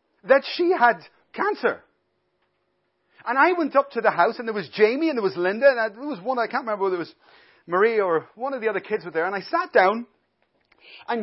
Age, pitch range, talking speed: 40-59, 200-295 Hz, 230 wpm